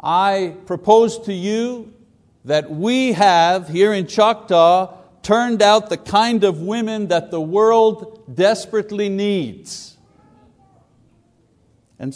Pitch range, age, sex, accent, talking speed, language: 150-205 Hz, 60-79, male, American, 110 wpm, English